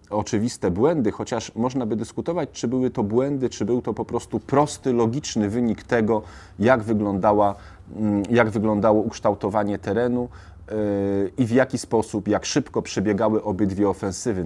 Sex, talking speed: male, 140 wpm